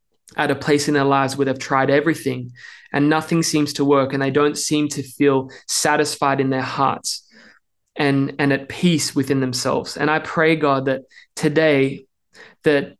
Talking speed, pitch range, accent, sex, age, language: 175 wpm, 135-155 Hz, Australian, male, 20-39, English